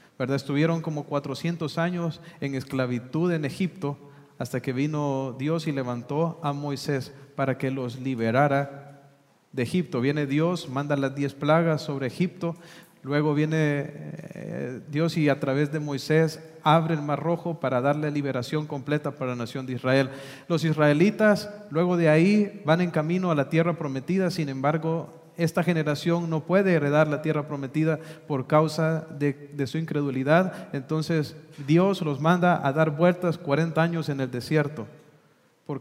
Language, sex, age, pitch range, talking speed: English, male, 40-59, 140-165 Hz, 155 wpm